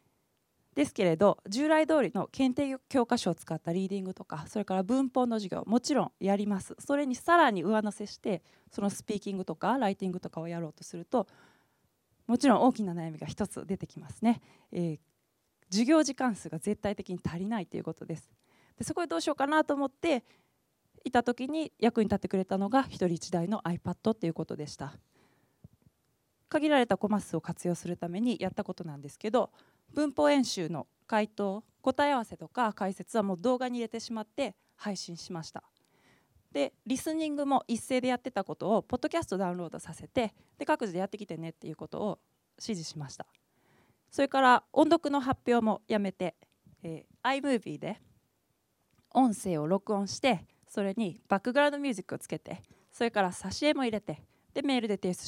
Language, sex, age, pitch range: Japanese, female, 20-39, 175-255 Hz